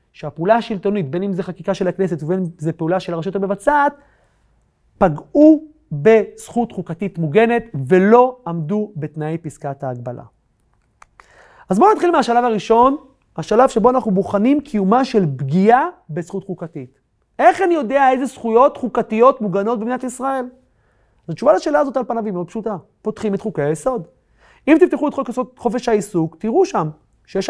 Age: 30-49